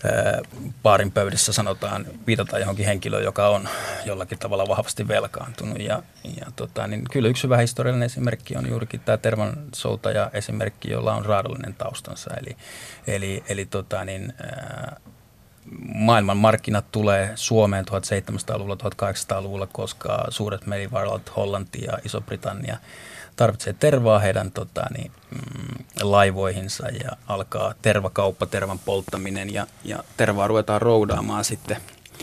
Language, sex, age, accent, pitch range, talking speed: Finnish, male, 30-49, native, 100-115 Hz, 115 wpm